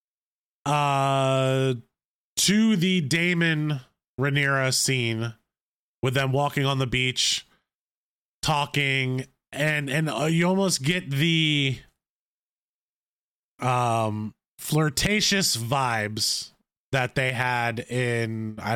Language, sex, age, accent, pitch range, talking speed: English, male, 20-39, American, 125-150 Hz, 90 wpm